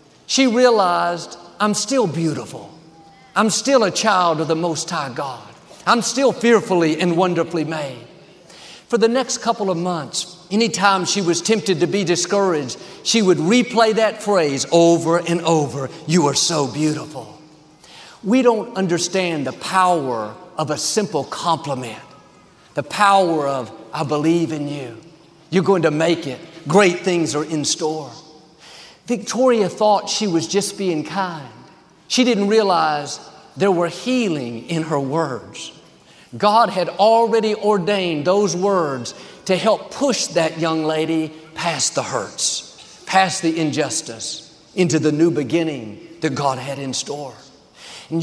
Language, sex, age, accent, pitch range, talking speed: English, male, 50-69, American, 155-200 Hz, 145 wpm